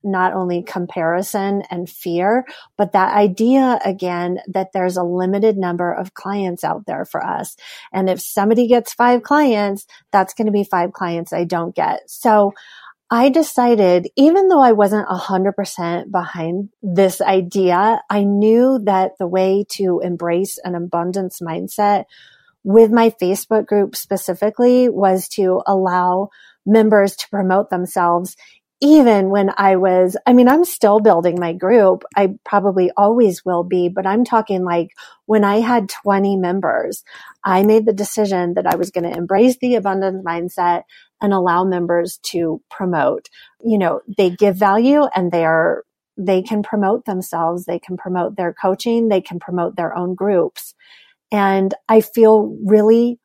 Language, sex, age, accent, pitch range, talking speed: English, female, 30-49, American, 180-215 Hz, 155 wpm